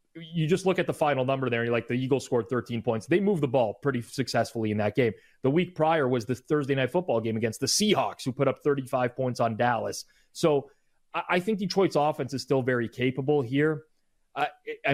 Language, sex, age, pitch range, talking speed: English, male, 30-49, 120-150 Hz, 215 wpm